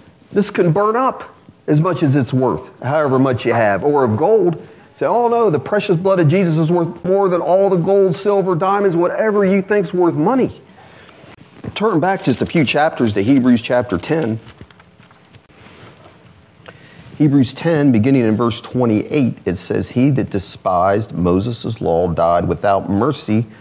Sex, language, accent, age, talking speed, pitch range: male, English, American, 40-59, 165 wpm, 110-160 Hz